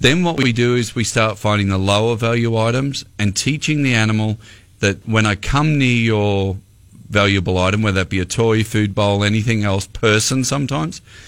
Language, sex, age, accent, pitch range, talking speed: English, male, 40-59, Australian, 100-115 Hz, 185 wpm